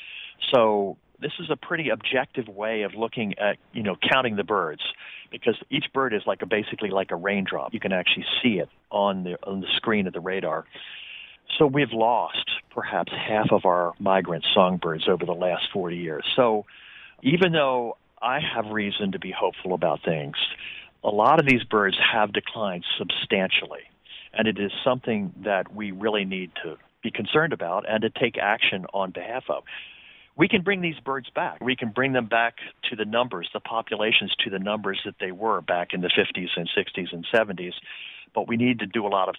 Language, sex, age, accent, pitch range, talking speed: English, male, 50-69, American, 100-130 Hz, 195 wpm